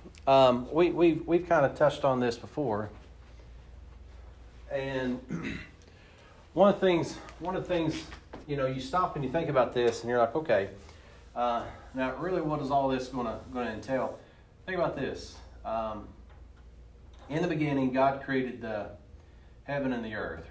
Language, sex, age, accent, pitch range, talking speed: English, male, 40-59, American, 100-145 Hz, 165 wpm